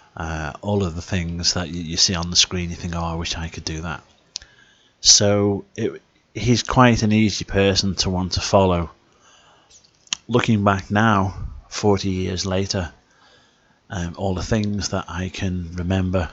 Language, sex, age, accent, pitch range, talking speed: English, male, 30-49, British, 85-100 Hz, 170 wpm